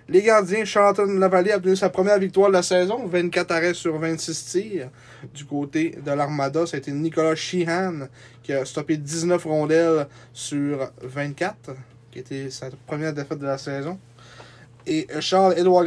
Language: French